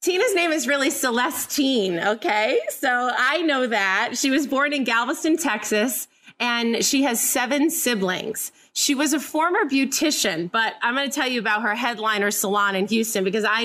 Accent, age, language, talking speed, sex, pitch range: American, 30-49, English, 170 wpm, female, 225-290 Hz